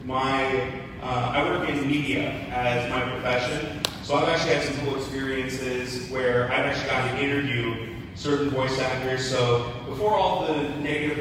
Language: English